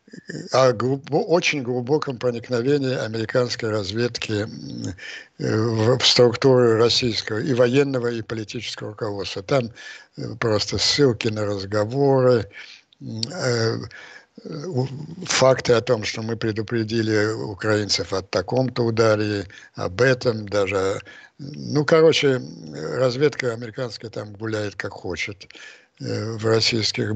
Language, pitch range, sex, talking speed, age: Russian, 105-130 Hz, male, 95 wpm, 60-79